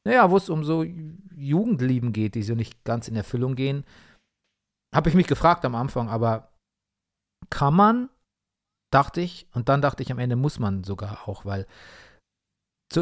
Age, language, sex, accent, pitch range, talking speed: 40-59, German, male, German, 115-145 Hz, 170 wpm